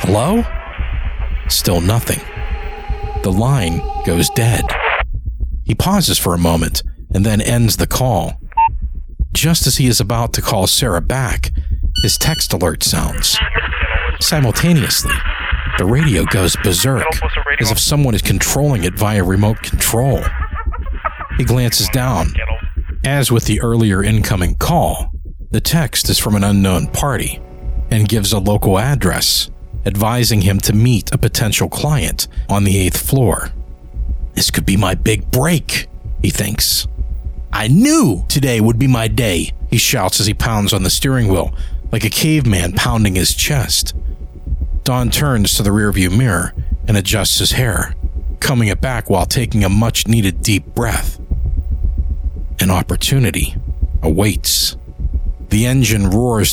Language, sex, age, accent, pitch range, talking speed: English, male, 50-69, American, 75-115 Hz, 140 wpm